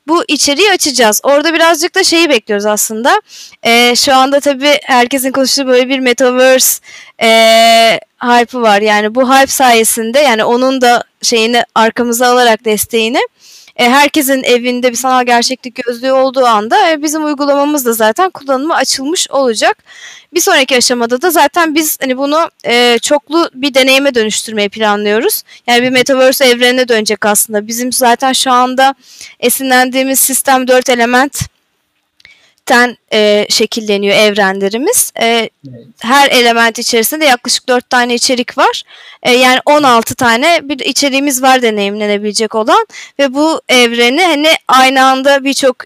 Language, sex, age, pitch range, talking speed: Turkish, female, 20-39, 230-280 Hz, 130 wpm